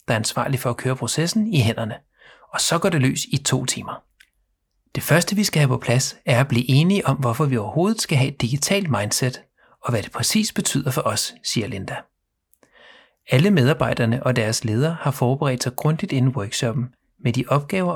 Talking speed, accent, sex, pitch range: 200 wpm, native, male, 125-160 Hz